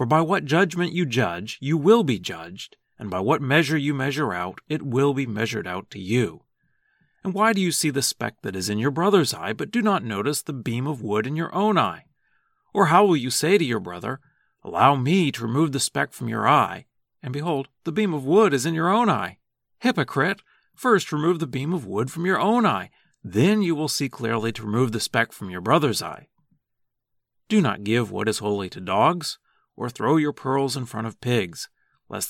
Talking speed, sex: 220 wpm, male